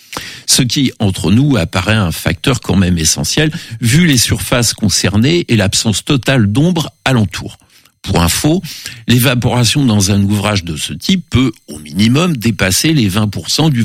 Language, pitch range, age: French, 100-140 Hz, 60-79